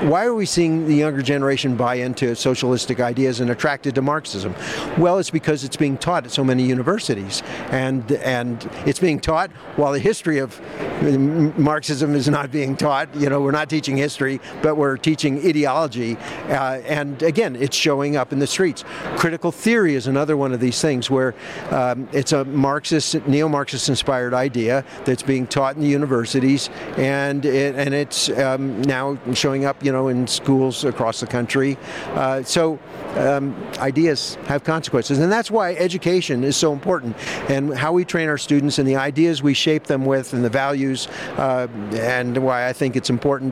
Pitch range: 130-150 Hz